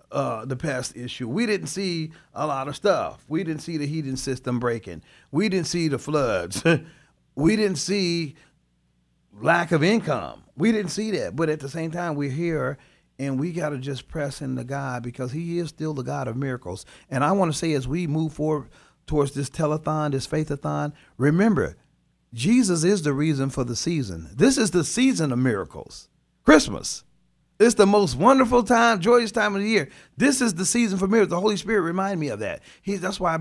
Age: 40-59